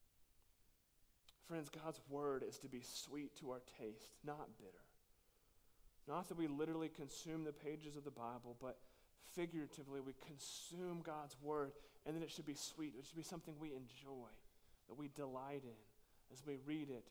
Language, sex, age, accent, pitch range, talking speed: English, male, 30-49, American, 130-170 Hz, 170 wpm